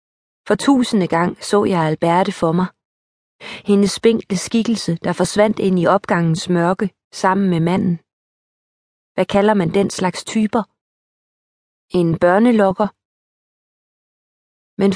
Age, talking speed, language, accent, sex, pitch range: 30-49, 115 wpm, Danish, native, female, 175-210 Hz